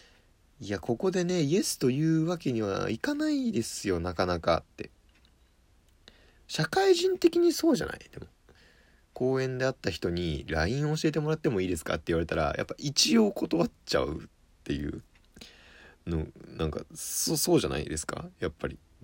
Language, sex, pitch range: Japanese, male, 80-115 Hz